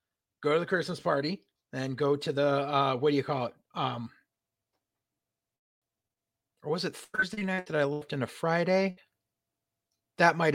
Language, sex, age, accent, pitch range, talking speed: English, male, 30-49, American, 135-185 Hz, 160 wpm